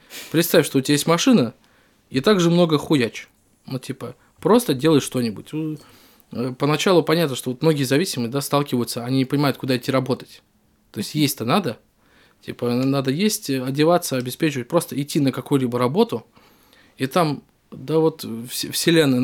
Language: Russian